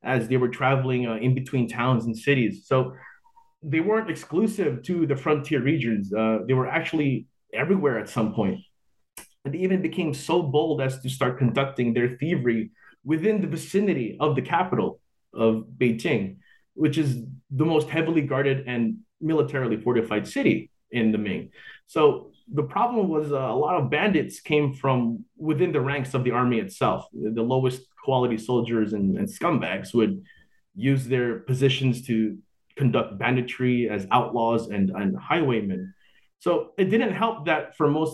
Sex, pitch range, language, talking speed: male, 115-150 Hz, English, 160 wpm